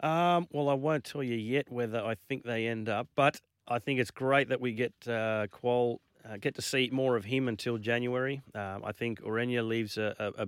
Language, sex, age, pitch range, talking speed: English, male, 30-49, 105-125 Hz, 225 wpm